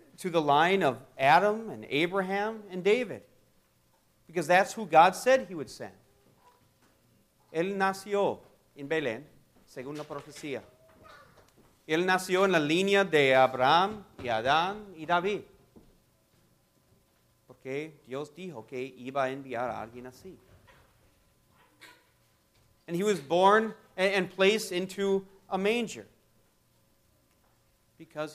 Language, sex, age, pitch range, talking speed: English, male, 40-59, 130-185 Hz, 115 wpm